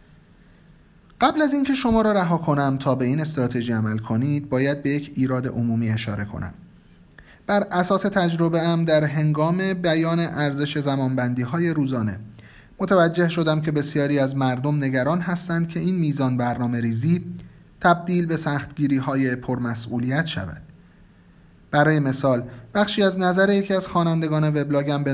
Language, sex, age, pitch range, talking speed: Persian, male, 30-49, 130-170 Hz, 140 wpm